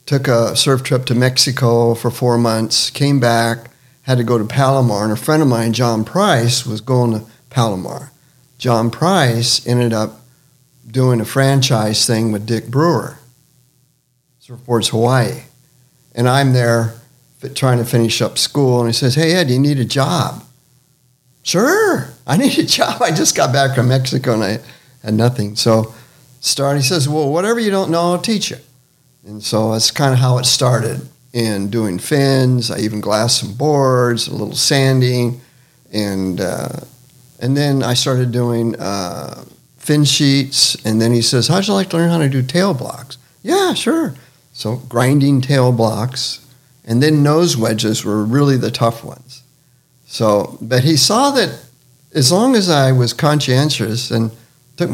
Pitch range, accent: 115-140 Hz, American